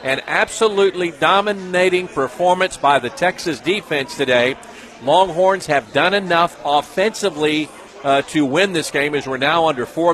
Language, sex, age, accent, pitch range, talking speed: English, male, 50-69, American, 140-180 Hz, 140 wpm